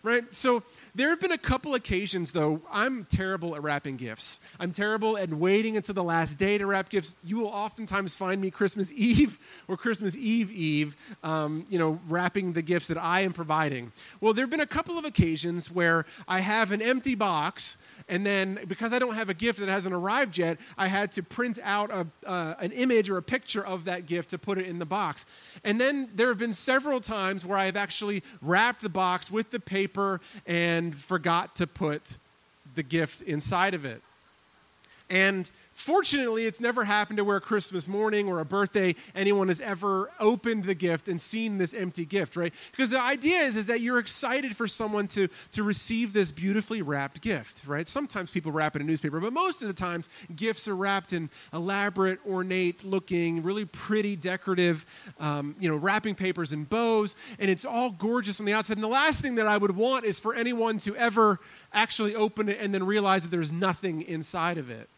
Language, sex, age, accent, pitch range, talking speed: English, male, 30-49, American, 175-220 Hz, 200 wpm